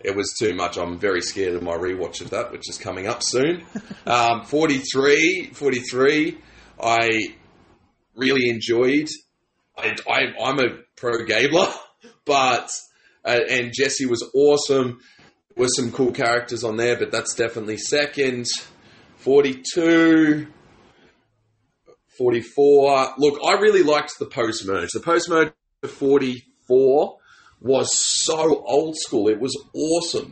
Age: 20-39